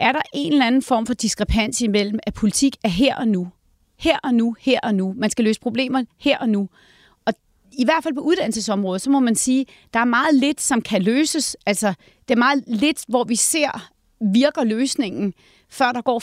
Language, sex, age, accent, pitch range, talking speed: Danish, female, 30-49, native, 215-275 Hz, 215 wpm